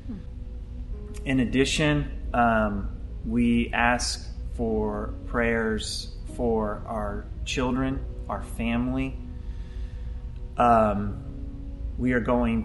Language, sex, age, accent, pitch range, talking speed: English, male, 30-49, American, 100-125 Hz, 75 wpm